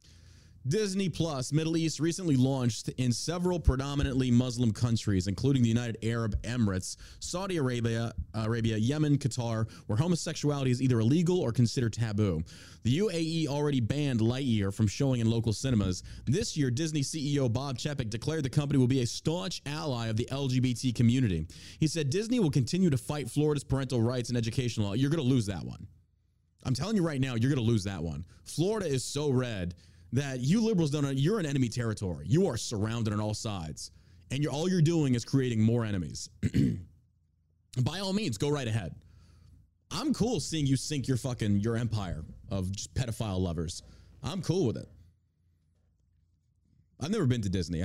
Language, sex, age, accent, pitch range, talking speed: English, male, 30-49, American, 95-140 Hz, 175 wpm